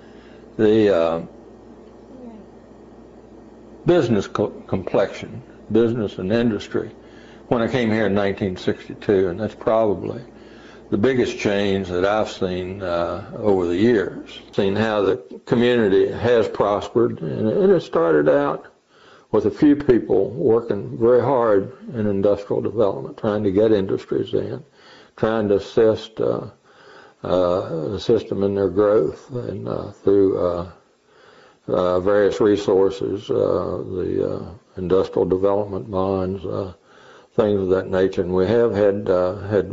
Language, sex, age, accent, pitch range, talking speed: English, male, 60-79, American, 95-115 Hz, 135 wpm